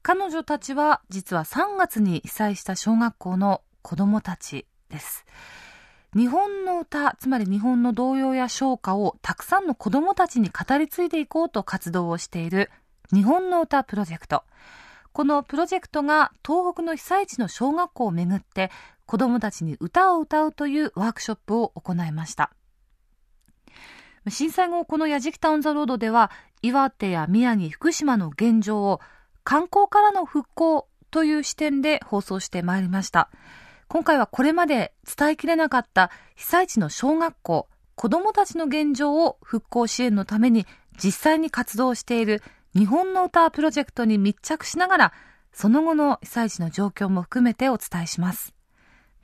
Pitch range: 205-320 Hz